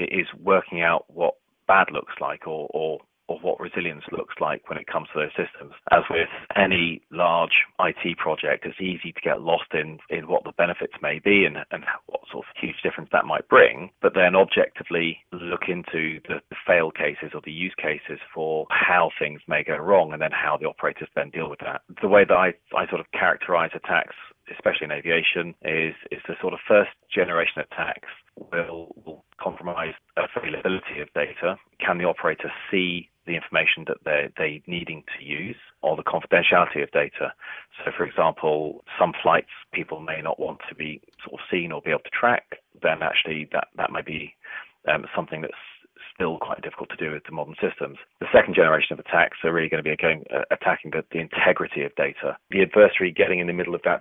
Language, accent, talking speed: English, British, 200 wpm